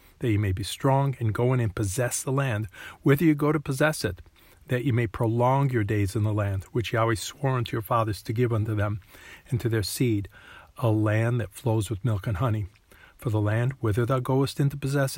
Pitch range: 105-125 Hz